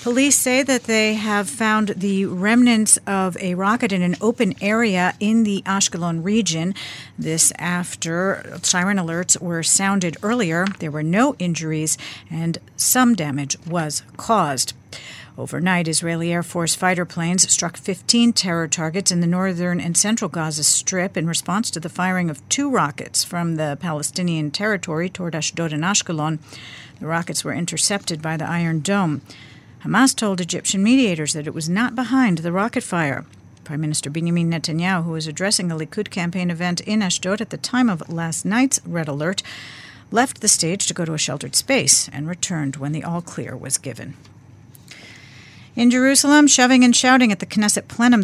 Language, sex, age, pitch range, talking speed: English, female, 50-69, 155-200 Hz, 165 wpm